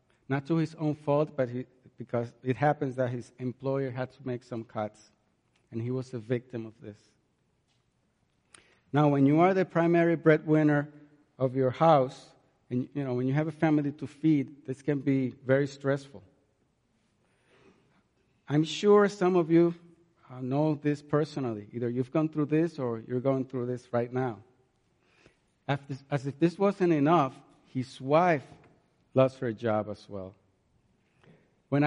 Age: 50-69